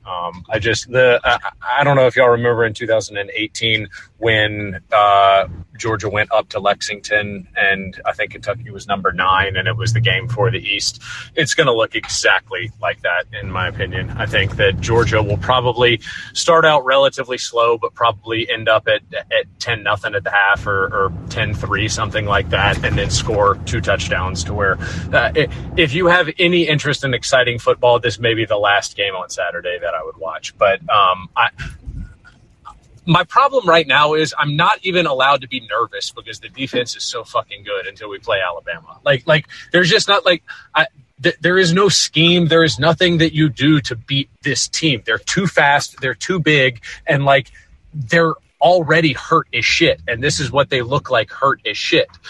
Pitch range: 110-160 Hz